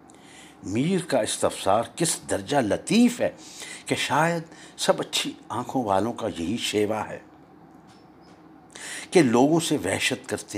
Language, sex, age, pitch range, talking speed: Urdu, male, 60-79, 110-170 Hz, 125 wpm